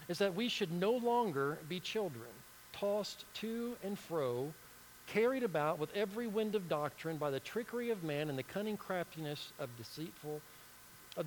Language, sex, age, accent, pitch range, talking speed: English, male, 50-69, American, 150-205 Hz, 165 wpm